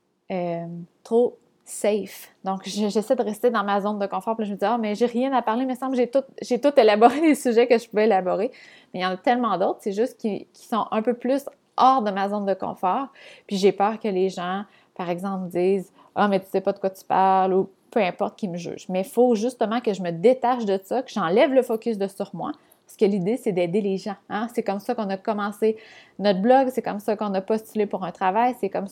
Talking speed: 260 wpm